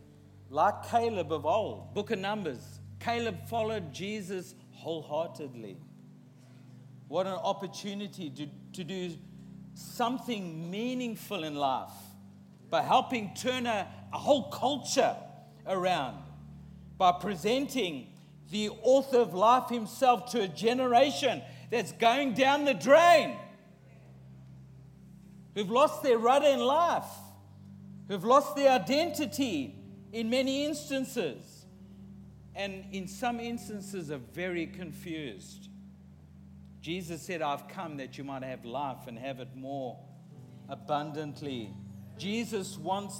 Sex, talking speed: male, 110 wpm